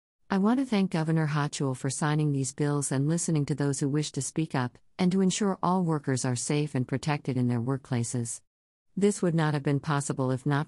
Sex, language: female, English